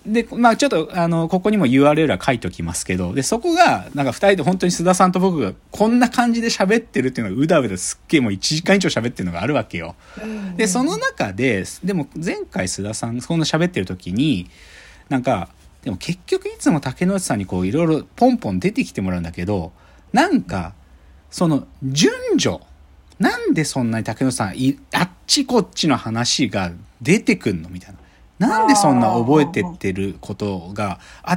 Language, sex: Japanese, male